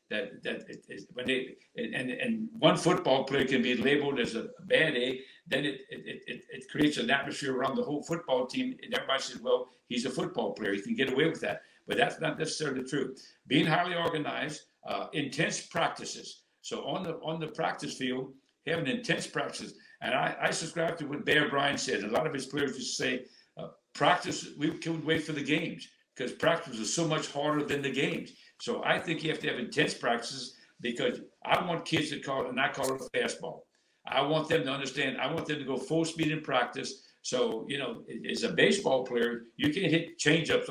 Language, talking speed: English, 215 wpm